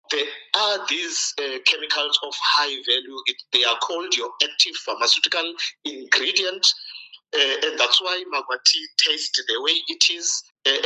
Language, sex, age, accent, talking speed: English, male, 50-69, South African, 150 wpm